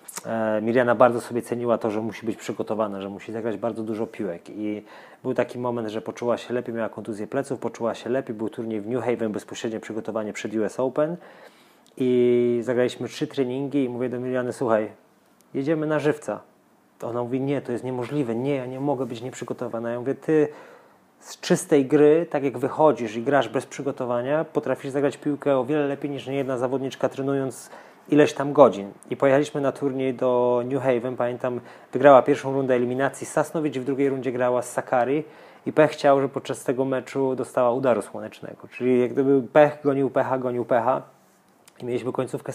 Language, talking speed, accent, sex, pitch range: Polish, 180 wpm, native, male, 120-140 Hz